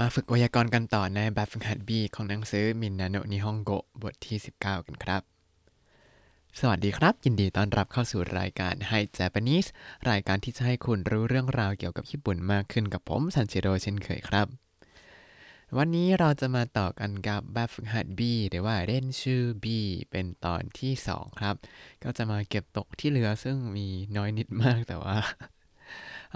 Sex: male